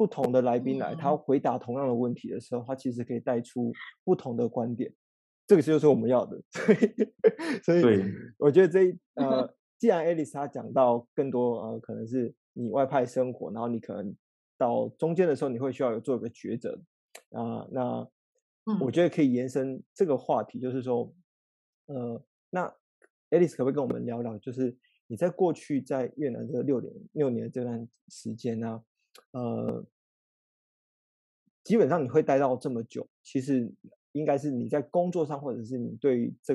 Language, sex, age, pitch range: Chinese, male, 20-39, 120-155 Hz